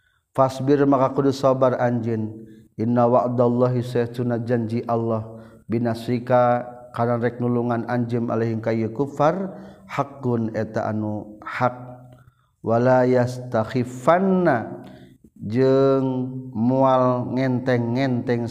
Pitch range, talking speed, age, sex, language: 110-125 Hz, 85 wpm, 40-59, male, Indonesian